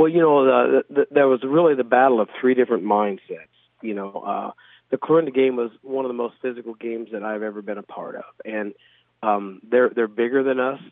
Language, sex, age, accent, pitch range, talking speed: German, male, 40-59, American, 110-125 Hz, 225 wpm